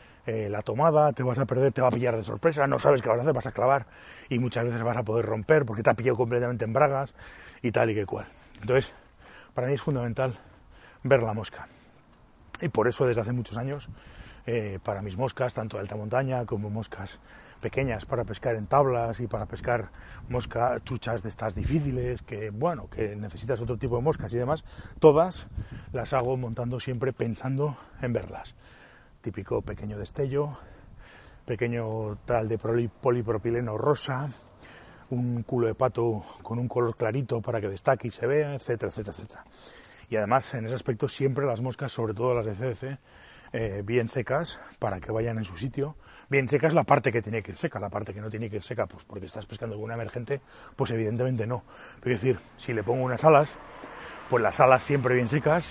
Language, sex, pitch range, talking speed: Spanish, male, 110-130 Hz, 195 wpm